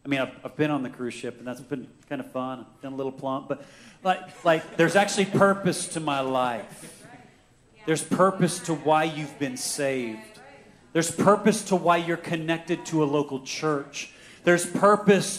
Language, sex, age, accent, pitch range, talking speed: English, male, 40-59, American, 140-175 Hz, 185 wpm